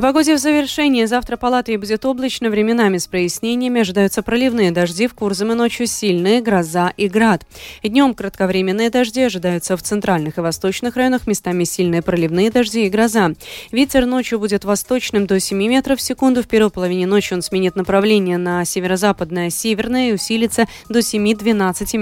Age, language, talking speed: 20-39, Russian, 165 wpm